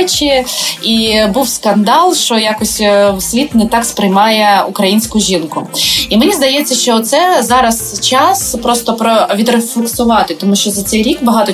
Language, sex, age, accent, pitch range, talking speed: Ukrainian, female, 20-39, native, 190-240 Hz, 135 wpm